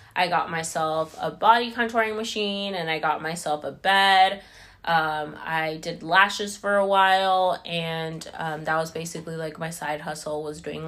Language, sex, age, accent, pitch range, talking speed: English, female, 20-39, American, 160-195 Hz, 170 wpm